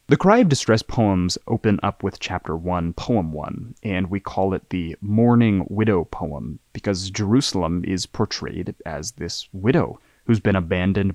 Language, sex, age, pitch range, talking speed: English, male, 20-39, 90-110 Hz, 160 wpm